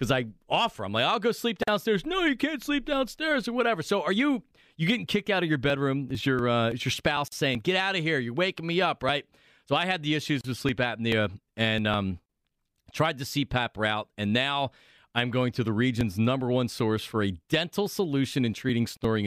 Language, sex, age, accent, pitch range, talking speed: English, male, 40-59, American, 125-180 Hz, 230 wpm